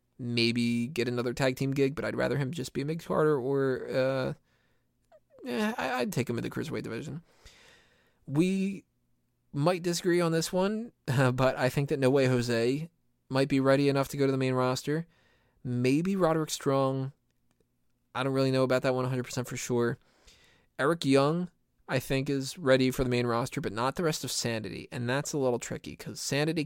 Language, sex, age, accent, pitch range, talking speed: English, male, 20-39, American, 120-155 Hz, 185 wpm